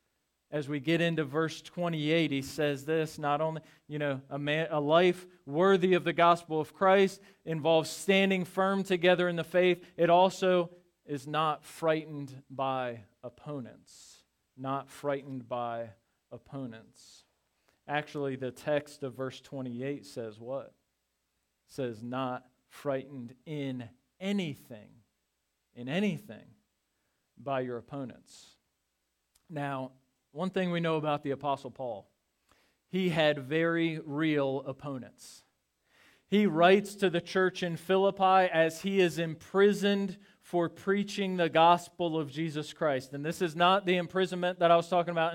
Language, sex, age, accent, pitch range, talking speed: English, male, 40-59, American, 135-175 Hz, 135 wpm